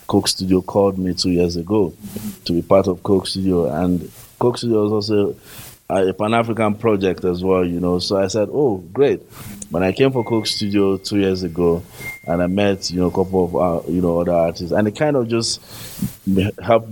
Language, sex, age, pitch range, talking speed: English, male, 20-39, 85-100 Hz, 210 wpm